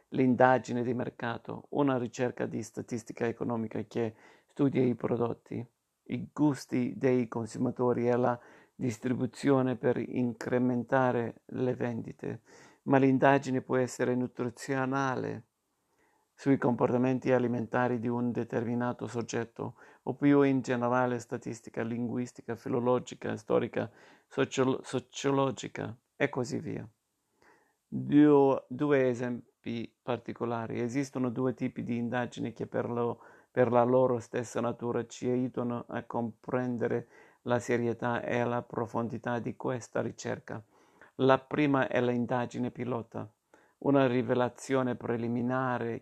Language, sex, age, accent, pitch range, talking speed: Italian, male, 50-69, native, 120-130 Hz, 110 wpm